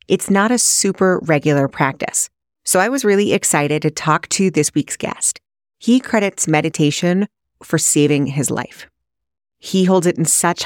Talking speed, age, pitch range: 165 wpm, 30-49, 150-195 Hz